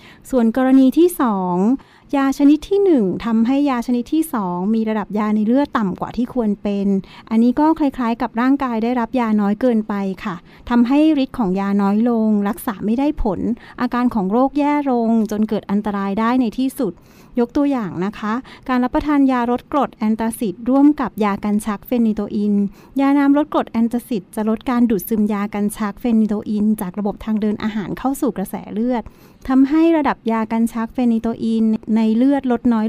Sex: female